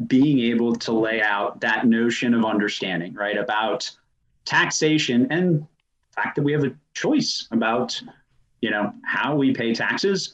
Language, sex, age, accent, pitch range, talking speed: English, male, 30-49, American, 115-140 Hz, 155 wpm